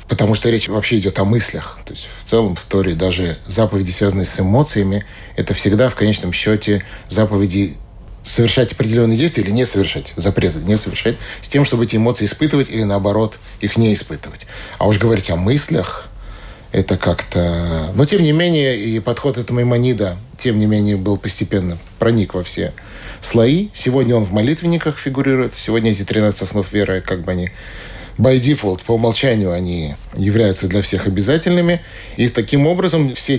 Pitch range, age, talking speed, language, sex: 95-120 Hz, 30-49, 170 wpm, Russian, male